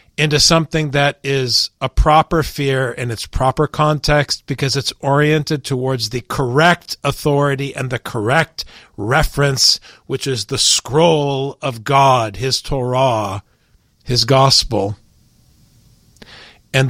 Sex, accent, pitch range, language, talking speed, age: male, American, 120-145 Hz, English, 115 wpm, 50-69